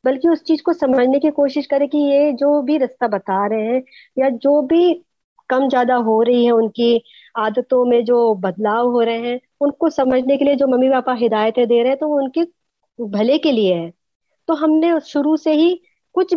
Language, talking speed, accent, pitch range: Hindi, 200 wpm, native, 230-290 Hz